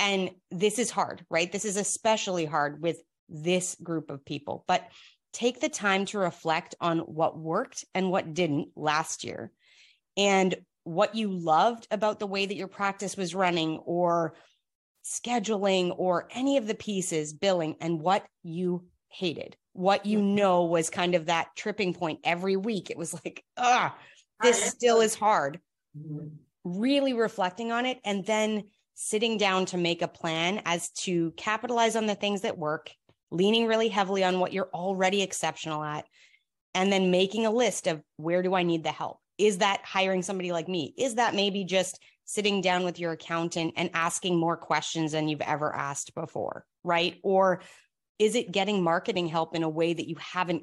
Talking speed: 175 wpm